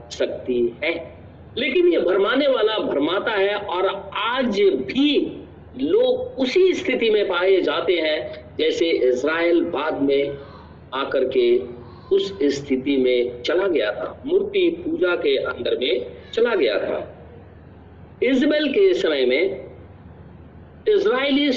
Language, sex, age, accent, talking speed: Hindi, male, 50-69, native, 120 wpm